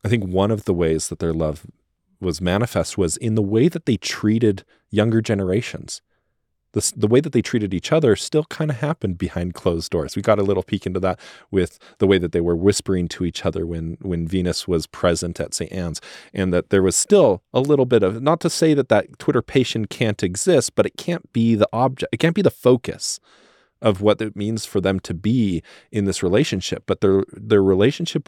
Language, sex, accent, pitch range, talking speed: English, male, American, 90-110 Hz, 220 wpm